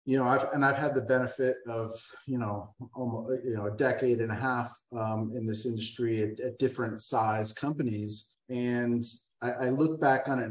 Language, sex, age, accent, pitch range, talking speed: English, male, 30-49, American, 110-125 Hz, 200 wpm